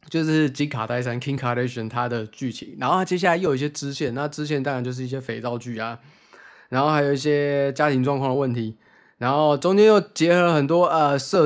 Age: 20-39